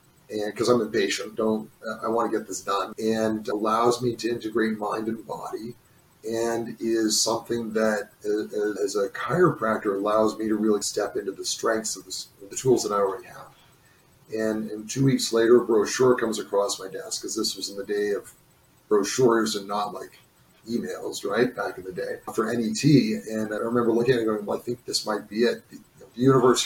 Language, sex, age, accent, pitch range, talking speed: English, male, 30-49, American, 110-125 Hz, 205 wpm